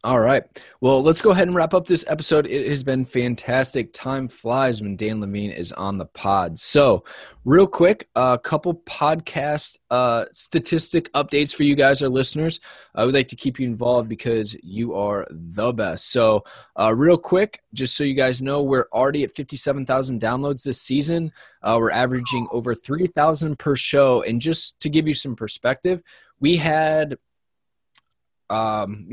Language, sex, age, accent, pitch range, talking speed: English, male, 20-39, American, 110-145 Hz, 170 wpm